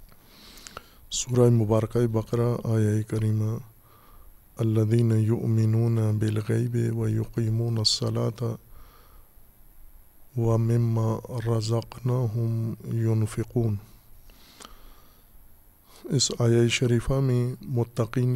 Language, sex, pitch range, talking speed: Urdu, male, 110-120 Hz, 60 wpm